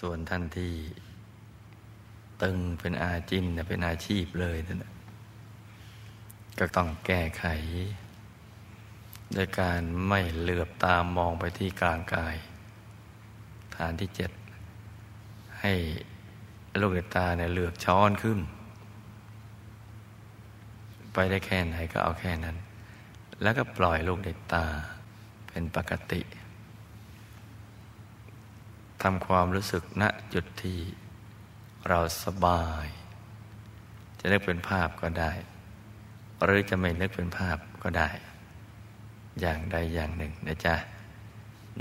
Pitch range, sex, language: 90-110 Hz, male, Thai